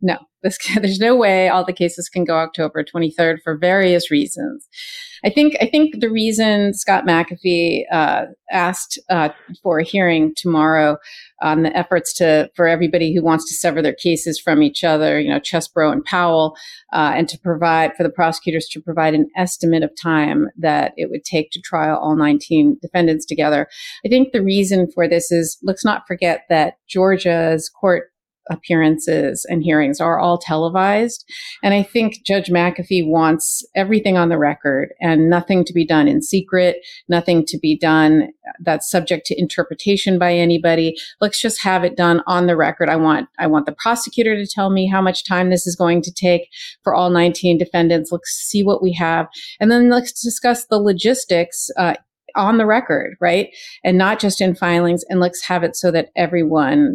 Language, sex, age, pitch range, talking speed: English, female, 40-59, 165-195 Hz, 185 wpm